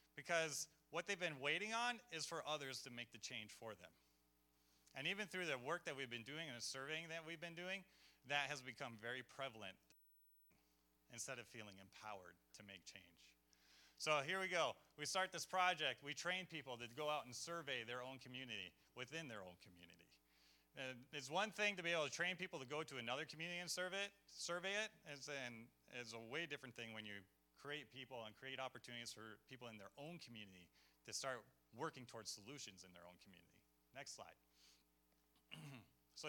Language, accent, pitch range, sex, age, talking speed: English, American, 105-165 Hz, male, 30-49, 190 wpm